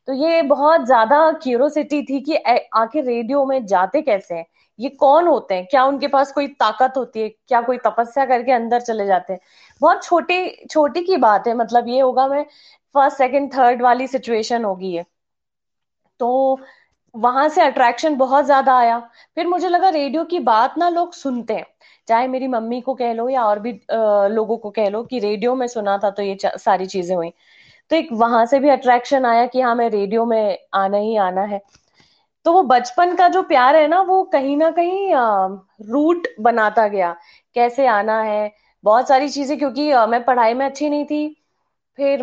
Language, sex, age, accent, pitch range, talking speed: Hindi, female, 20-39, native, 220-285 Hz, 190 wpm